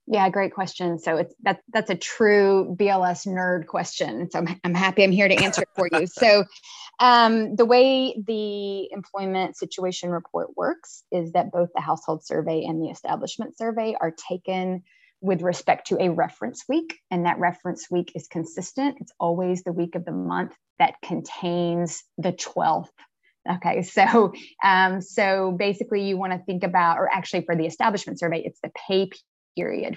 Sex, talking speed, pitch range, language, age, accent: female, 175 wpm, 175-210 Hz, English, 20-39, American